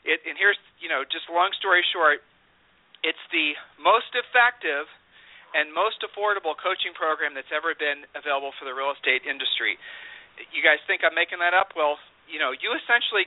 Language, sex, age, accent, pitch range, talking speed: English, male, 40-59, American, 150-190 Hz, 170 wpm